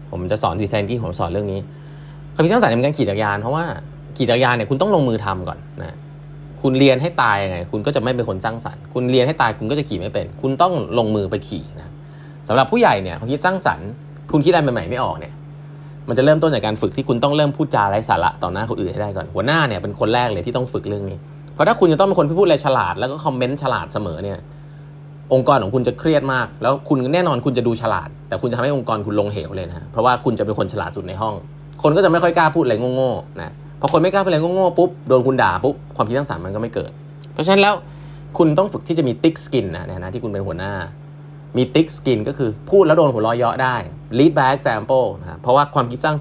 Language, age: Thai, 20-39